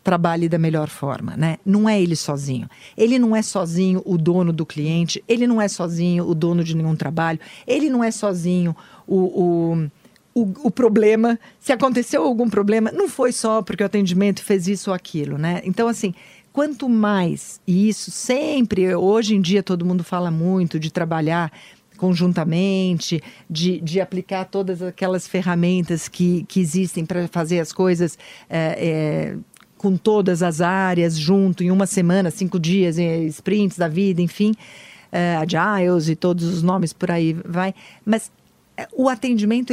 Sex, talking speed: female, 155 wpm